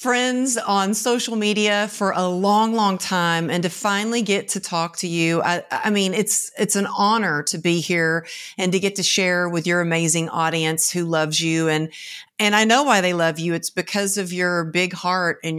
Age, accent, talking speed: 50-69, American, 210 wpm